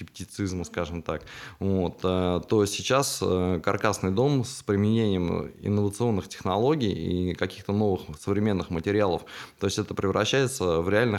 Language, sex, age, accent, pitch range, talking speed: Russian, male, 20-39, native, 90-110 Hz, 125 wpm